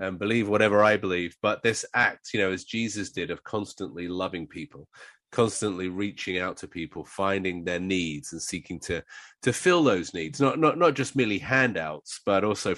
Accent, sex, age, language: British, male, 30-49, English